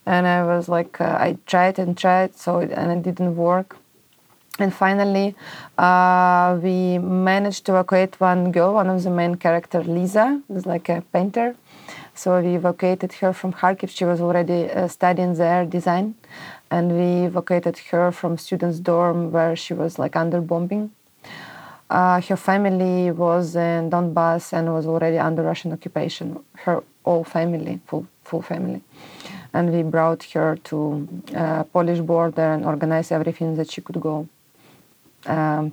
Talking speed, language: 160 wpm, English